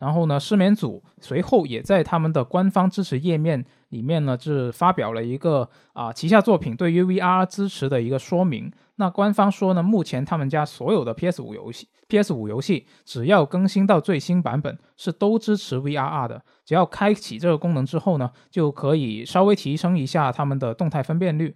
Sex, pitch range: male, 130-180 Hz